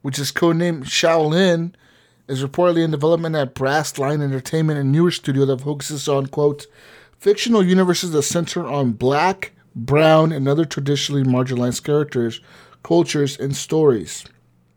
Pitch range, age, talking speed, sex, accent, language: 130-160 Hz, 30-49, 140 wpm, male, American, English